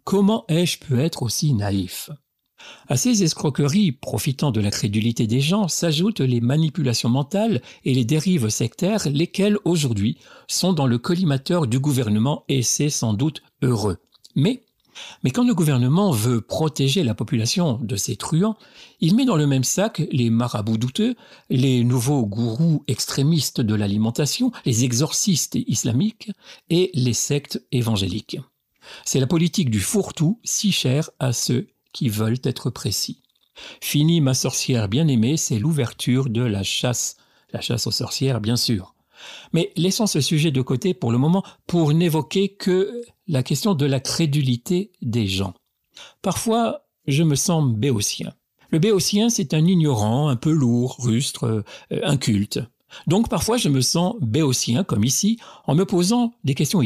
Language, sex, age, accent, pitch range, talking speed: French, male, 60-79, French, 120-175 Hz, 155 wpm